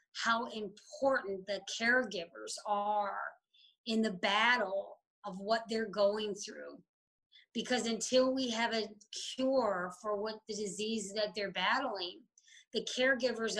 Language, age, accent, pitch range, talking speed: English, 30-49, American, 195-230 Hz, 125 wpm